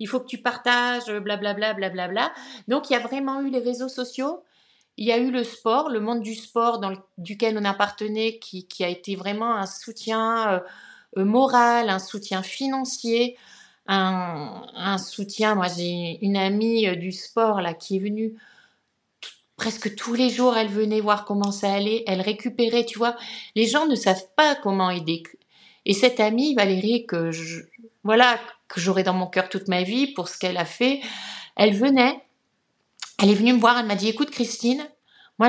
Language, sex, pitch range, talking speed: French, female, 195-240 Hz, 195 wpm